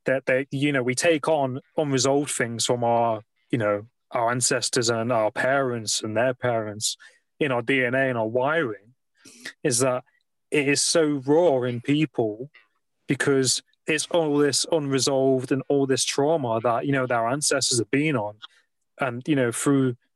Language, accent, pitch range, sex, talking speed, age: English, British, 125-145 Hz, male, 165 wpm, 20-39